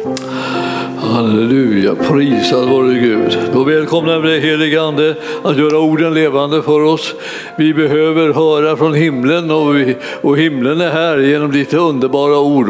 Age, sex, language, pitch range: 60-79, male, Swedish, 135-160 Hz